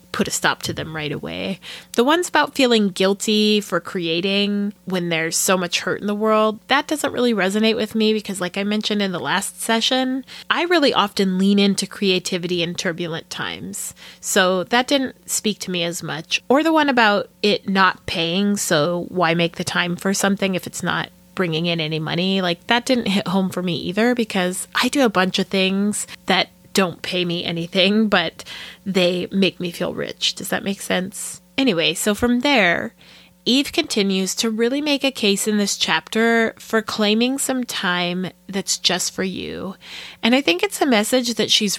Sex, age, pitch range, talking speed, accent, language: female, 20-39, 180-230 Hz, 190 wpm, American, English